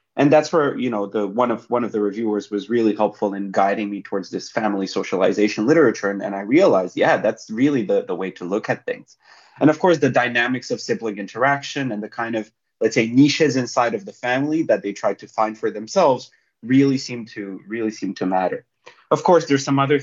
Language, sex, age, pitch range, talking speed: English, male, 30-49, 105-140 Hz, 225 wpm